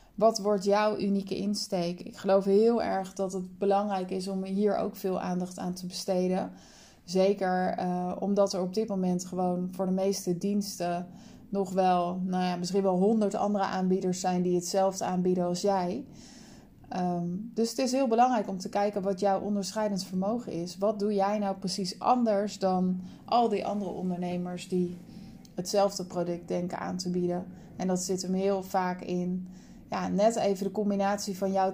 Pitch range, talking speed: 185-205 Hz, 175 wpm